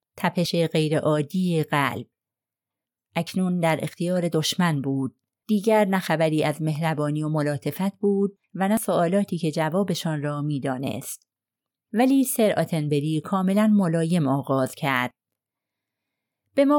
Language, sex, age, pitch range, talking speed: Persian, female, 30-49, 155-215 Hz, 110 wpm